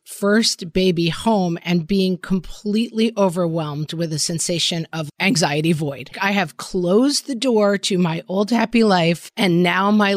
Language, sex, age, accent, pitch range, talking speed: English, female, 40-59, American, 160-200 Hz, 155 wpm